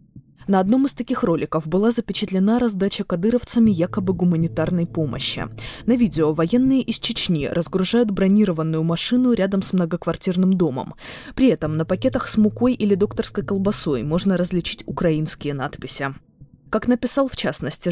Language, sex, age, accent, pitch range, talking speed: Russian, female, 20-39, native, 160-215 Hz, 135 wpm